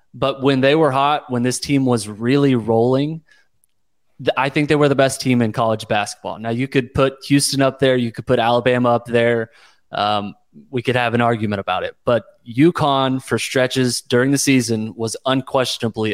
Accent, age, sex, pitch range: American, 20-39, male, 115-135 Hz